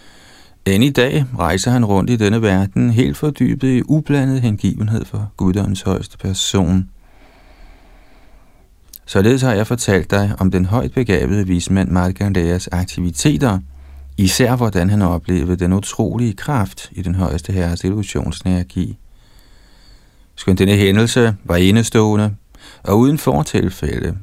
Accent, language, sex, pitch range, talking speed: native, Danish, male, 90-115 Hz, 125 wpm